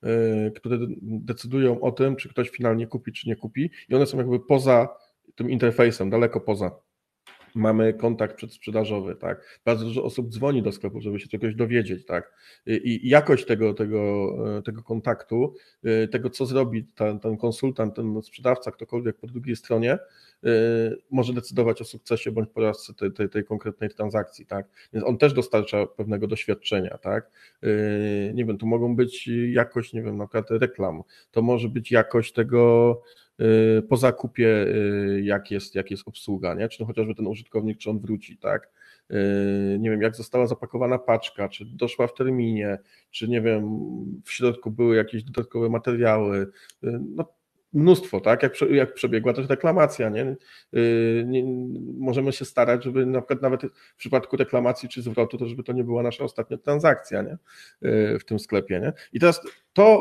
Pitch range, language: 110-125 Hz, Polish